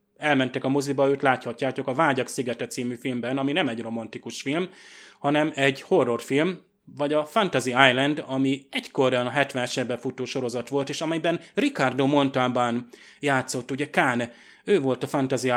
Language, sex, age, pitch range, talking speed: Hungarian, male, 30-49, 125-140 Hz, 160 wpm